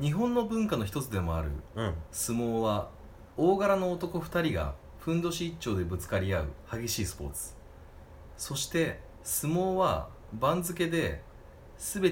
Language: Japanese